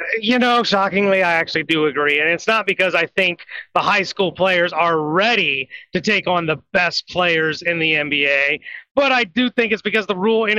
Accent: American